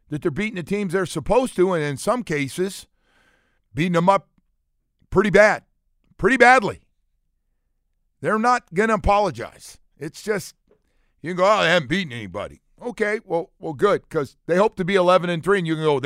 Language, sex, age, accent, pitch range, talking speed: English, male, 50-69, American, 105-165 Hz, 185 wpm